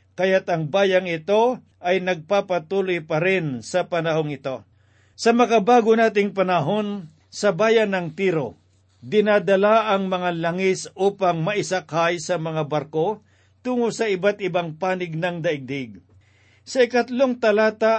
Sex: male